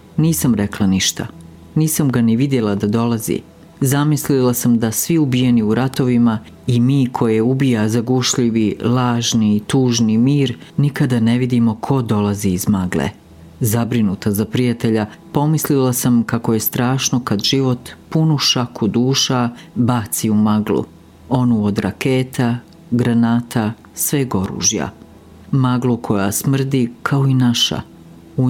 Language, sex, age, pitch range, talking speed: Croatian, female, 40-59, 105-135 Hz, 130 wpm